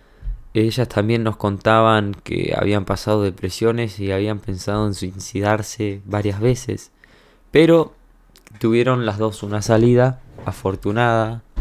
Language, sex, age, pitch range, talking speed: Spanish, male, 20-39, 100-120 Hz, 115 wpm